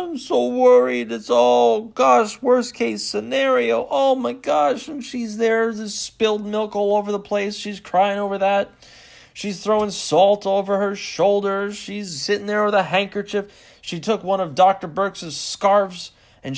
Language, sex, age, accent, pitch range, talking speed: English, male, 30-49, American, 155-210 Hz, 165 wpm